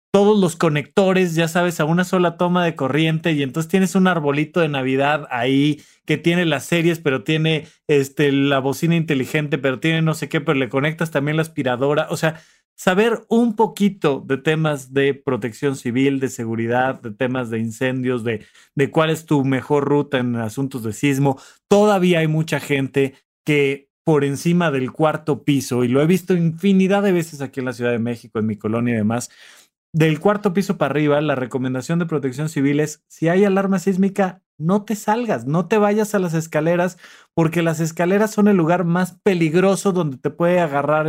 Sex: male